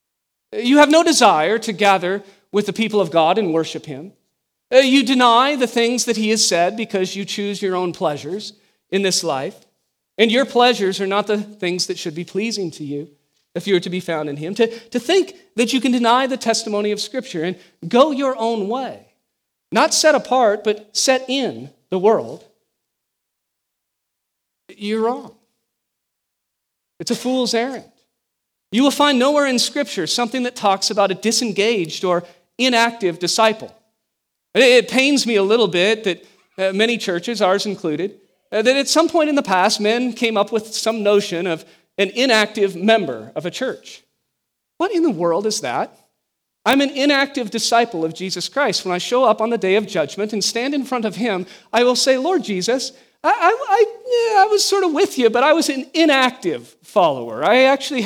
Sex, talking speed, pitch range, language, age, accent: male, 180 wpm, 190-255 Hz, English, 40-59, American